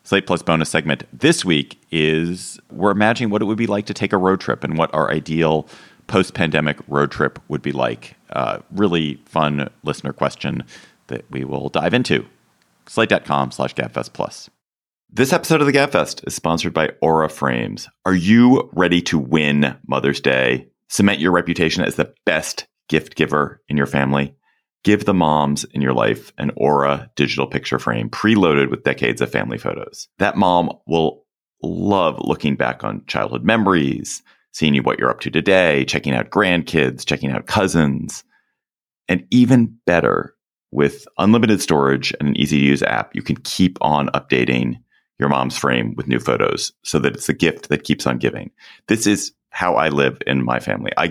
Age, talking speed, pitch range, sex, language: 30-49, 175 wpm, 70-95 Hz, male, English